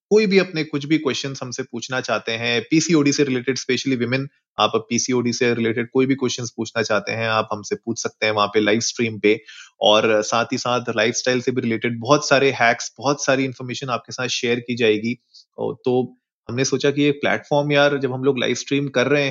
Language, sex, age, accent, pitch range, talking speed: Hindi, male, 30-49, native, 115-135 Hz, 200 wpm